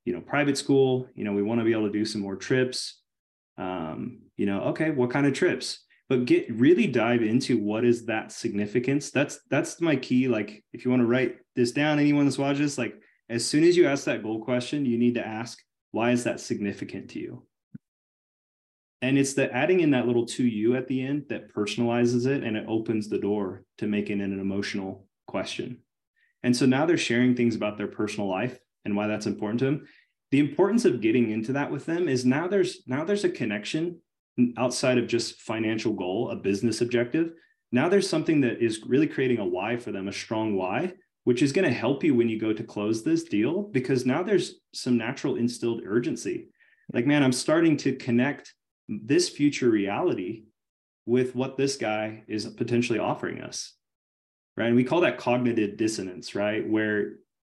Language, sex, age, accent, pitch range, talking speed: English, male, 20-39, American, 110-135 Hz, 200 wpm